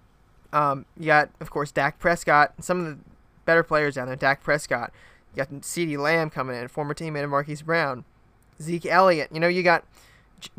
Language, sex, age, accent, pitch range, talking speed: English, male, 20-39, American, 140-175 Hz, 195 wpm